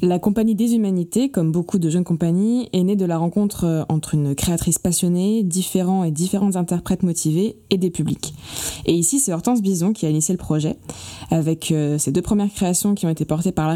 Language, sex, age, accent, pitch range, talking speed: French, female, 20-39, French, 160-195 Hz, 205 wpm